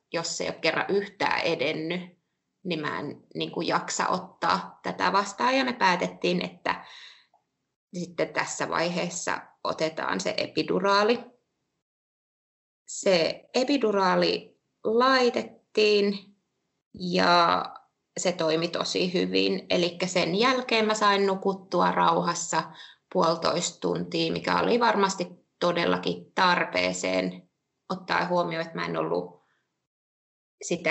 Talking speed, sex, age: 105 wpm, female, 20-39